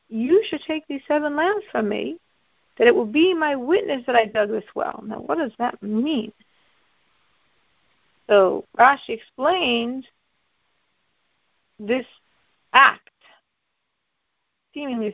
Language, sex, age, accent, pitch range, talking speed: English, female, 50-69, American, 205-300 Hz, 120 wpm